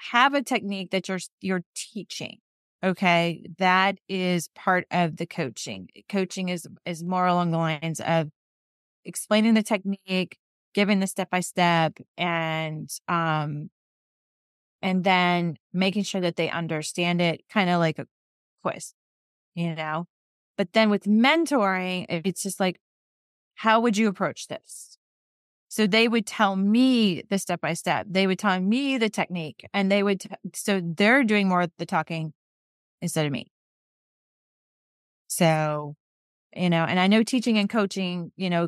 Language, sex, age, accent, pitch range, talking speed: English, female, 30-49, American, 165-200 Hz, 150 wpm